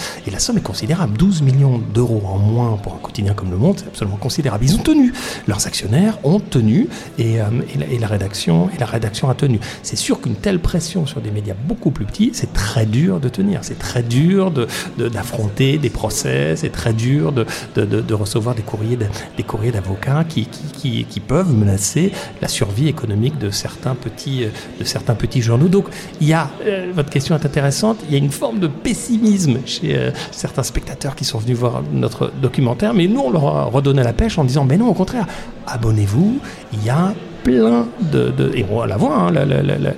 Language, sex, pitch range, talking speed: French, male, 110-155 Hz, 220 wpm